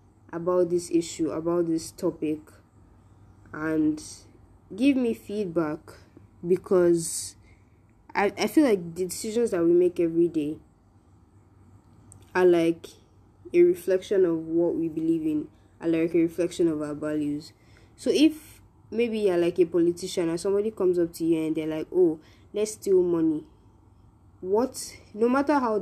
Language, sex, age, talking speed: English, female, 20-39, 145 wpm